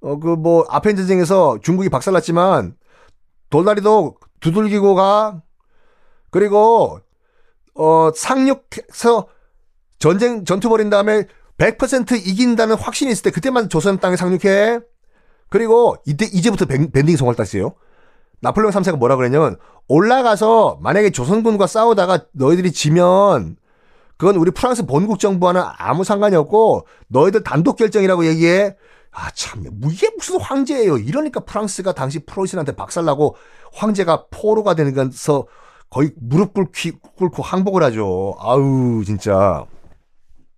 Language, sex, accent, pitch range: Korean, male, native, 150-215 Hz